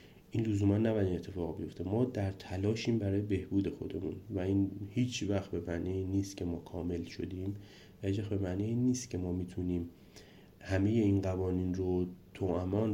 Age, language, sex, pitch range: 30-49, Persian, male, 90-105 Hz